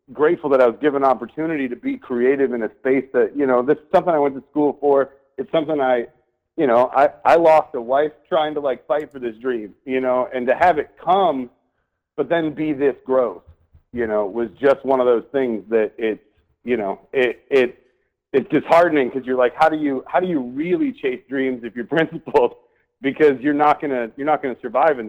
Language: English